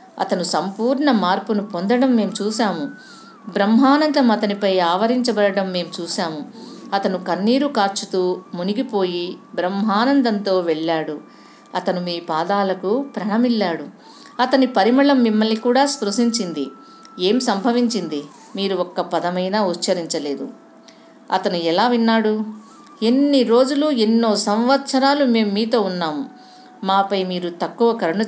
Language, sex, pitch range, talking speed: Telugu, female, 180-245 Hz, 95 wpm